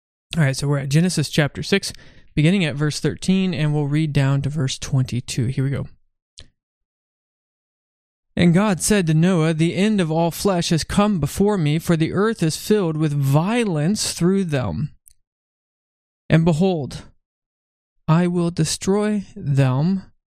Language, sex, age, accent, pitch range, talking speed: English, male, 20-39, American, 150-190 Hz, 150 wpm